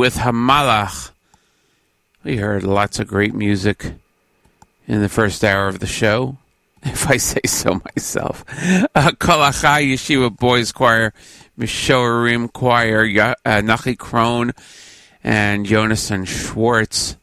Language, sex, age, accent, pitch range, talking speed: English, male, 40-59, American, 105-130 Hz, 120 wpm